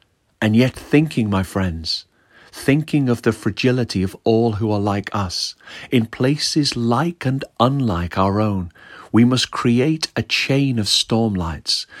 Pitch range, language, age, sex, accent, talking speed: 95-120 Hz, English, 40-59, male, British, 150 wpm